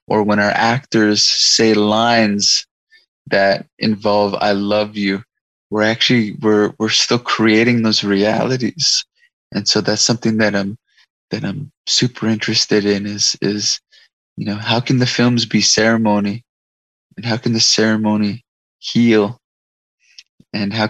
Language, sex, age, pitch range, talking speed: English, male, 20-39, 105-115 Hz, 140 wpm